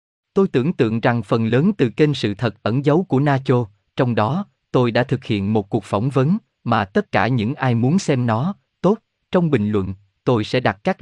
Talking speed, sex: 220 wpm, male